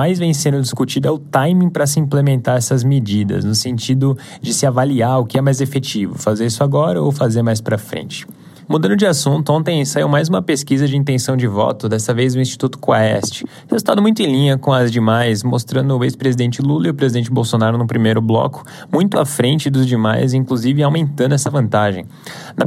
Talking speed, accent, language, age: 200 wpm, Brazilian, Portuguese, 20-39